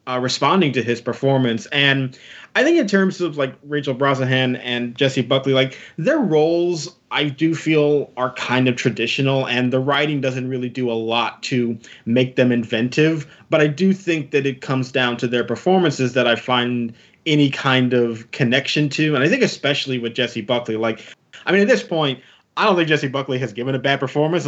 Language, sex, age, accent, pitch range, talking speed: English, male, 20-39, American, 130-165 Hz, 200 wpm